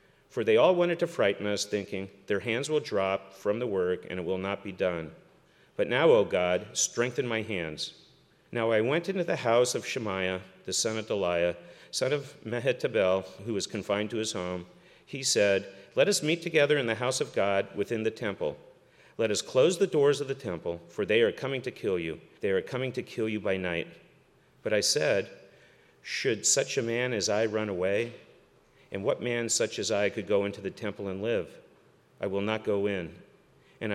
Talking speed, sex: 205 wpm, male